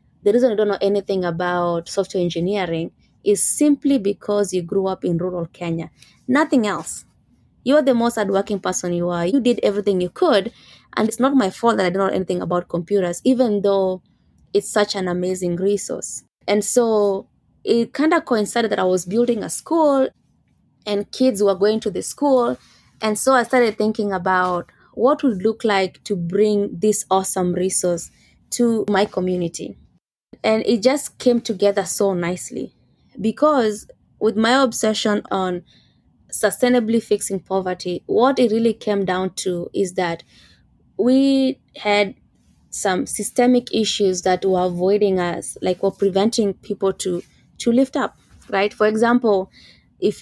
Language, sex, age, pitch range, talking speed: English, female, 20-39, 185-230 Hz, 160 wpm